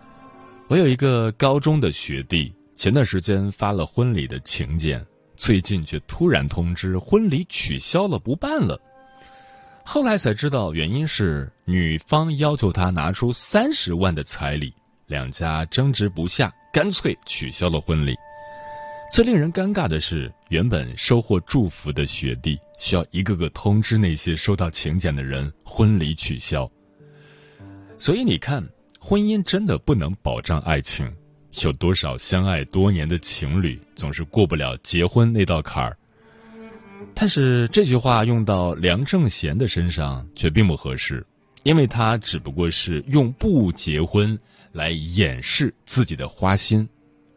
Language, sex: Chinese, male